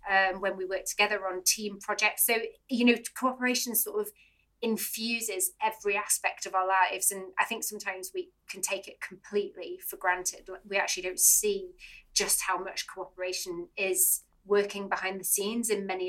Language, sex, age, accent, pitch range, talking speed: English, female, 30-49, British, 185-220 Hz, 170 wpm